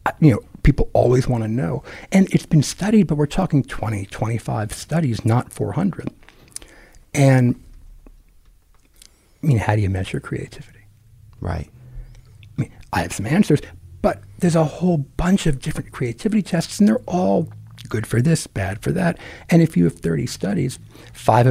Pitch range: 105-145 Hz